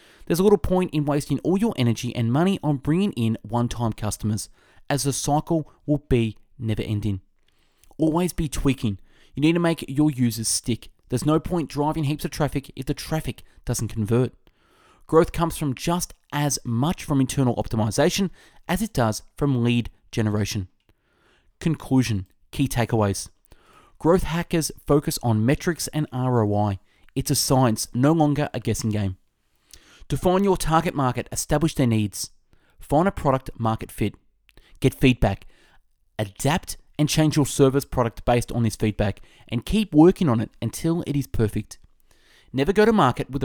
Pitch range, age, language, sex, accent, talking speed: 110-150 Hz, 20-39, English, male, Australian, 160 wpm